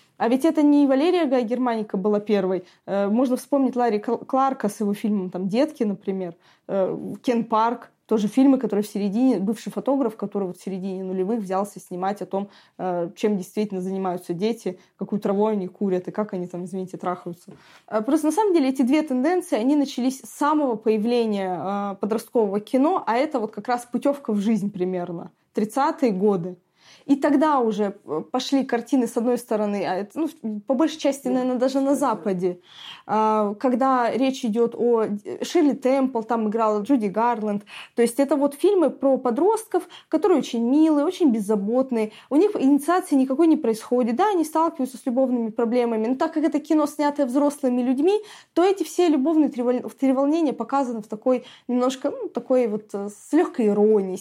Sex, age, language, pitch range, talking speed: female, 20-39, Russian, 205-280 Hz, 165 wpm